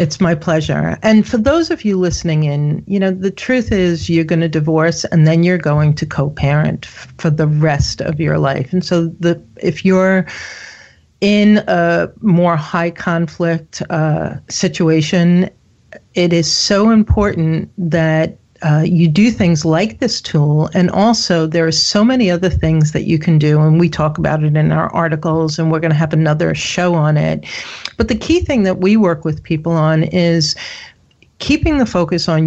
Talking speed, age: 185 wpm, 40-59